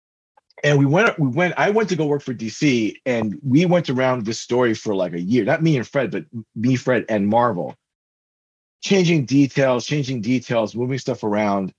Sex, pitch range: male, 120-165 Hz